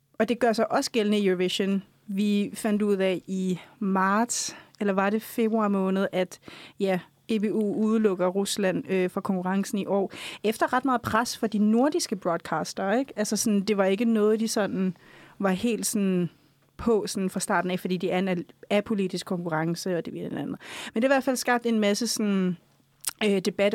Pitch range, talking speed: 195-235 Hz, 185 wpm